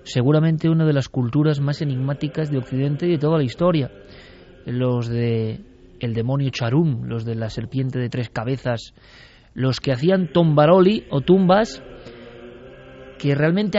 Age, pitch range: 20-39, 125-160 Hz